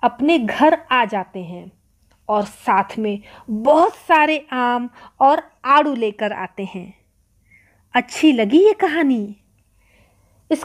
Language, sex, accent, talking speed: English, female, Indian, 120 wpm